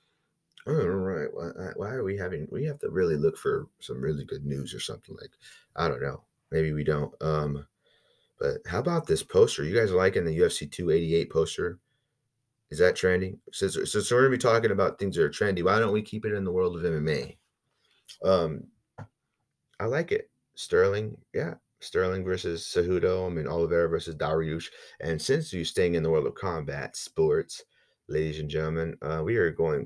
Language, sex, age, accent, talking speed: English, male, 30-49, American, 200 wpm